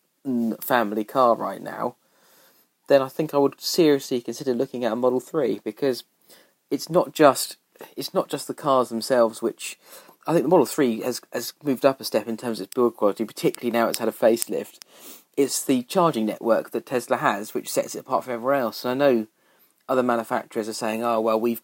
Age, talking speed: 30-49, 200 wpm